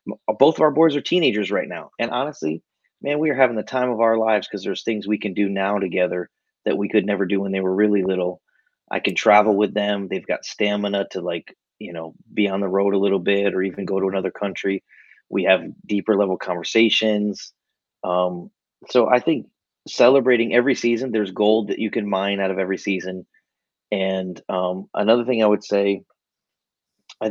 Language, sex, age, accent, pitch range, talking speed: English, male, 30-49, American, 95-110 Hz, 200 wpm